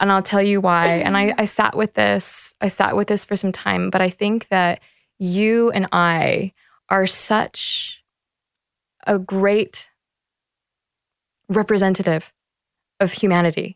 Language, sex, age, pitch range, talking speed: English, female, 20-39, 170-205 Hz, 140 wpm